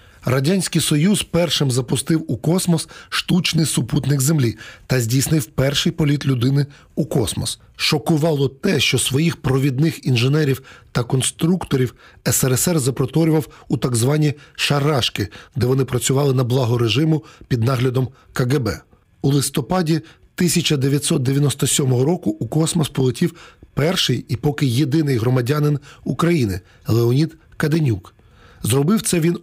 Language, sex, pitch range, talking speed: Ukrainian, male, 125-160 Hz, 120 wpm